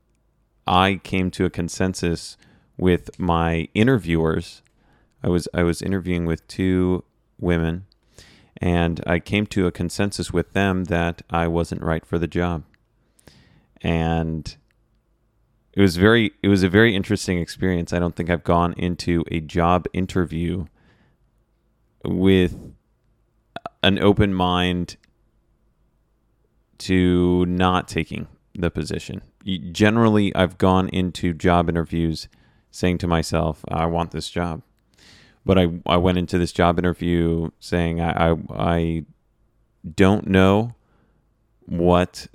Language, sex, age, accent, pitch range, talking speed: English, male, 30-49, American, 85-95 Hz, 125 wpm